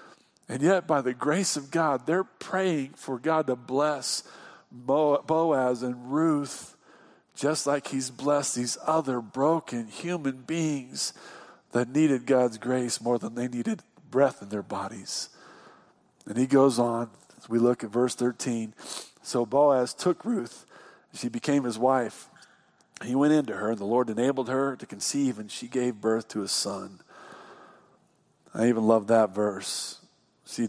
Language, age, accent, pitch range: English, 50-69, American, 115-145 Hz